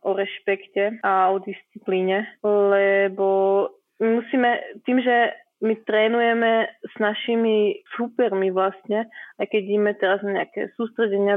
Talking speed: 115 wpm